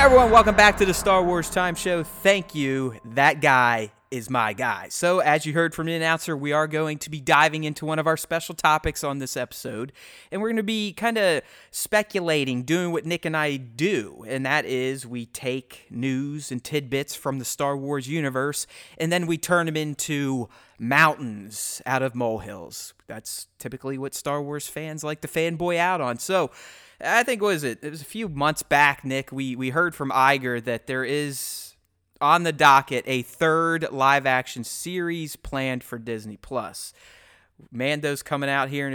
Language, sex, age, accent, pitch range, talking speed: English, male, 30-49, American, 125-165 Hz, 190 wpm